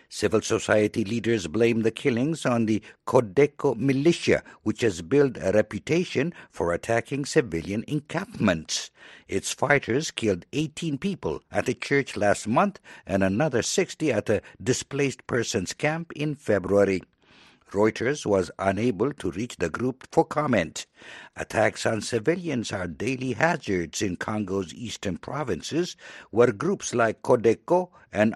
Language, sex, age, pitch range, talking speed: English, male, 60-79, 100-140 Hz, 135 wpm